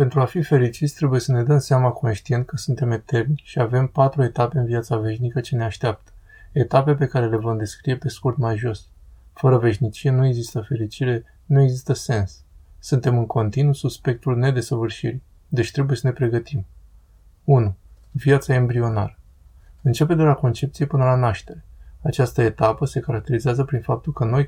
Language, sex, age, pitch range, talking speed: Romanian, male, 20-39, 115-135 Hz, 170 wpm